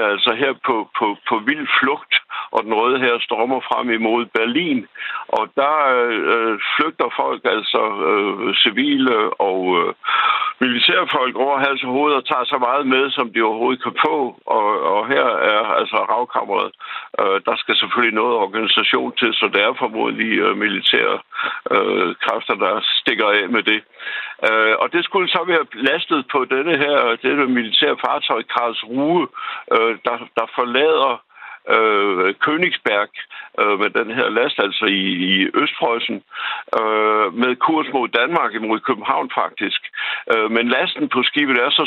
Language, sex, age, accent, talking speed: Danish, male, 60-79, native, 155 wpm